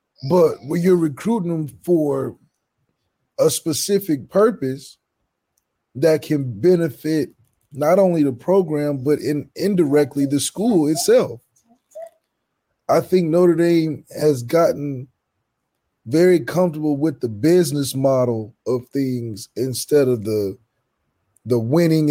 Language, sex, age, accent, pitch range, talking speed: English, male, 20-39, American, 135-180 Hz, 110 wpm